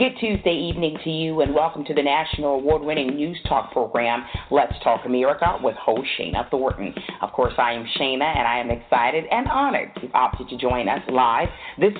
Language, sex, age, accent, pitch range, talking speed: English, female, 40-59, American, 140-175 Hz, 200 wpm